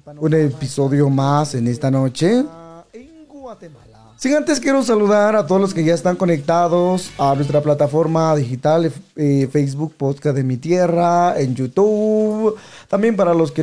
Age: 30-49